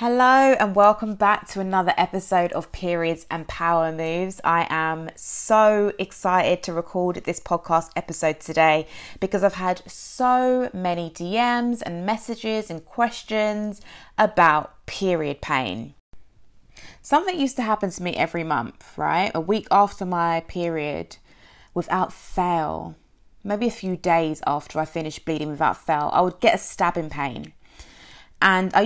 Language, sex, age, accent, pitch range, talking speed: English, female, 20-39, British, 165-210 Hz, 145 wpm